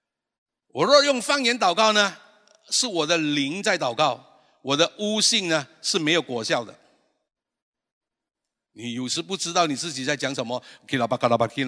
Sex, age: male, 60-79